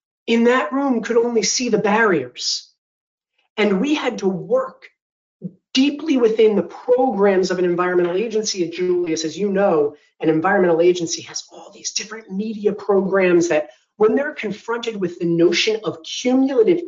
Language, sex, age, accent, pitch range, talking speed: English, male, 30-49, American, 175-255 Hz, 155 wpm